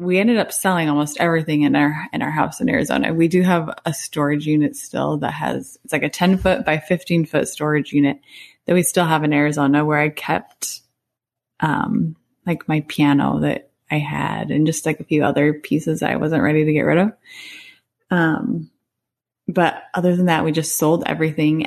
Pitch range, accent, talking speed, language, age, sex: 150-175 Hz, American, 195 wpm, English, 20-39, female